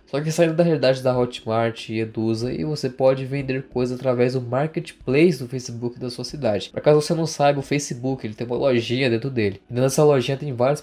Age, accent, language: 20-39, Brazilian, Portuguese